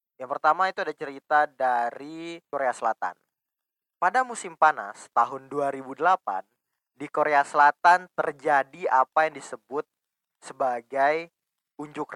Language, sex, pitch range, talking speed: Indonesian, male, 125-165 Hz, 110 wpm